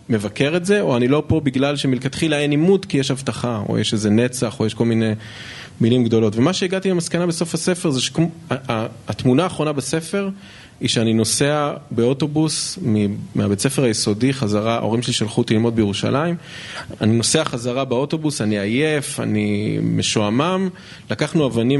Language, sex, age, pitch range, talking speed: Hebrew, male, 20-39, 110-140 Hz, 155 wpm